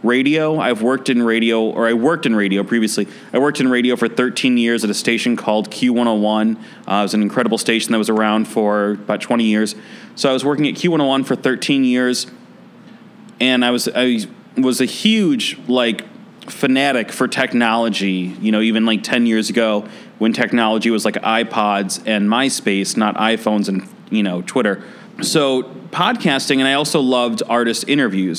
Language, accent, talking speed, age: English, American, 180 wpm, 30-49